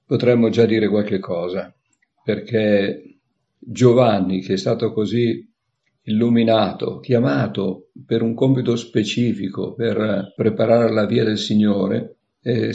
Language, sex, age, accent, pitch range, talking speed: Italian, male, 50-69, native, 105-120 Hz, 115 wpm